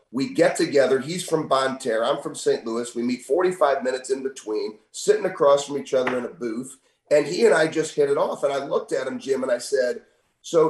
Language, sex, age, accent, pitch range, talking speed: English, male, 30-49, American, 140-215 Hz, 235 wpm